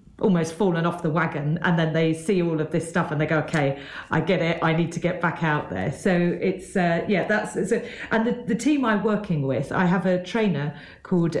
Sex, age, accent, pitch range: female, 40-59, British, 160-185 Hz